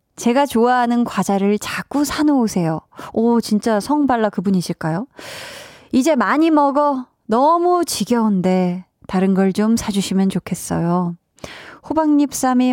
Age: 20-39